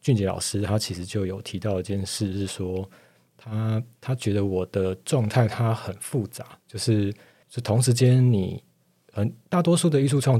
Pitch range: 95-120 Hz